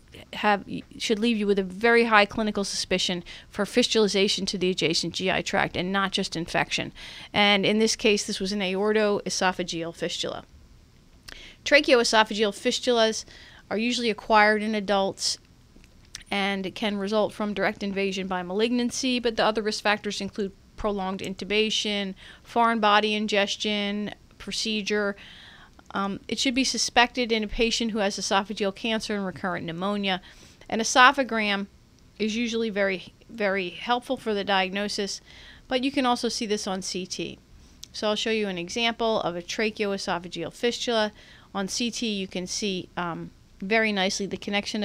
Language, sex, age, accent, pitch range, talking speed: English, female, 40-59, American, 195-225 Hz, 150 wpm